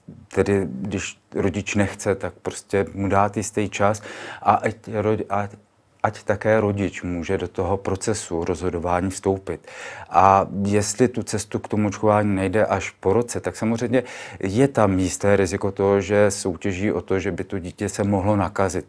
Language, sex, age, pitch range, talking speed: Czech, male, 40-59, 95-105 Hz, 160 wpm